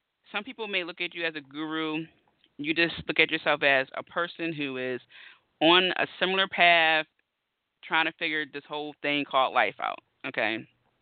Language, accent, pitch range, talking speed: English, American, 140-175 Hz, 180 wpm